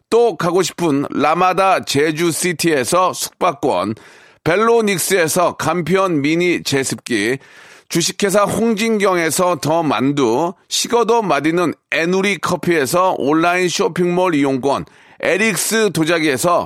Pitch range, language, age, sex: 175-220 Hz, Korean, 40-59, male